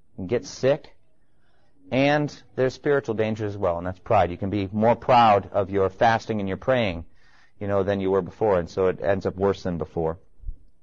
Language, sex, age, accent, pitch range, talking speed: English, male, 40-59, American, 100-140 Hz, 200 wpm